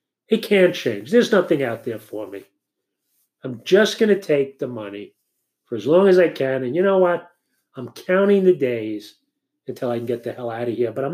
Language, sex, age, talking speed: English, male, 40-59, 220 wpm